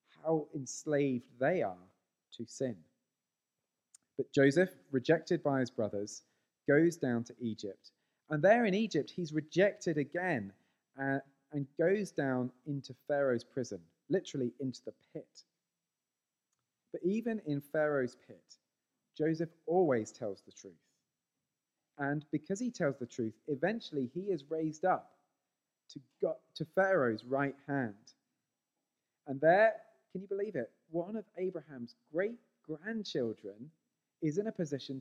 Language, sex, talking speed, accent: English, male, 125 wpm, British